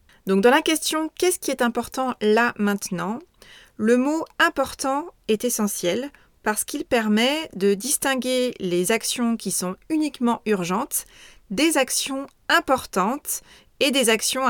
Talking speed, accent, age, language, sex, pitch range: 130 wpm, French, 30-49, French, female, 195-250 Hz